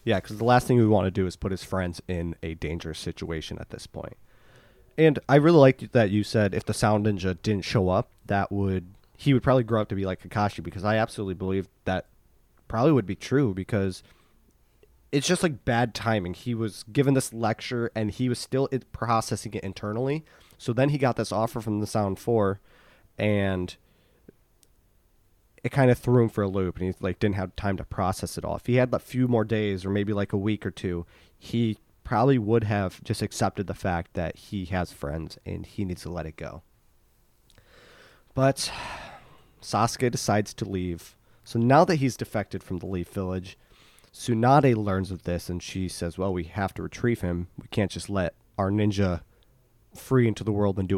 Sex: male